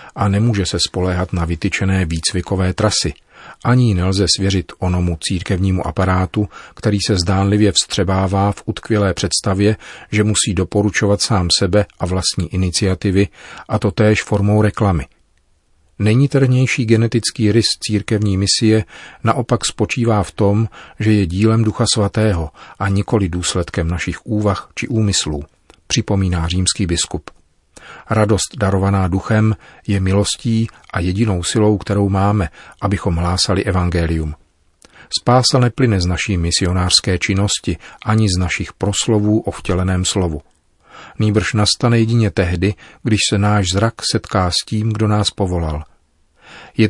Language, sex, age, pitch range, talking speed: Czech, male, 40-59, 90-110 Hz, 125 wpm